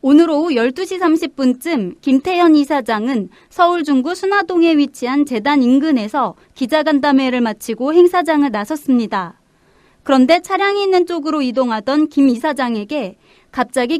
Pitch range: 250-330 Hz